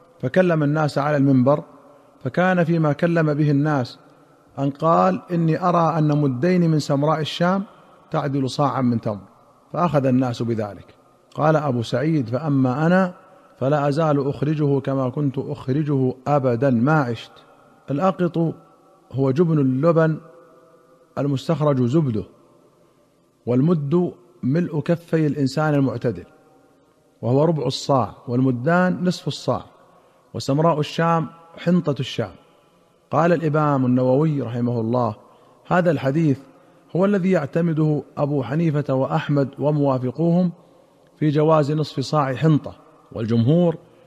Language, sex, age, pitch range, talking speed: Arabic, male, 50-69, 130-165 Hz, 110 wpm